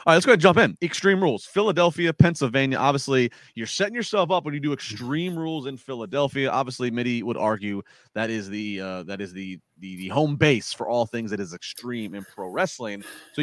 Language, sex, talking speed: English, male, 220 wpm